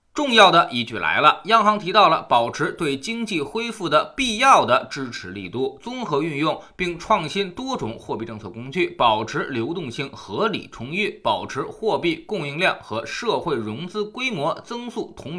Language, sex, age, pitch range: Chinese, male, 20-39, 155-235 Hz